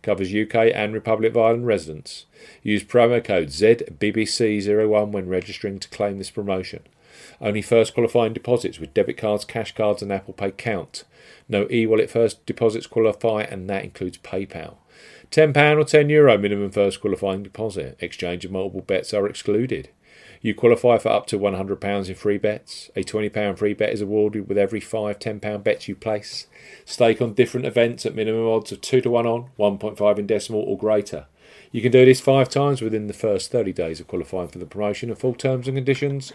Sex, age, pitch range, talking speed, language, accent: male, 40-59, 100-130 Hz, 185 wpm, English, British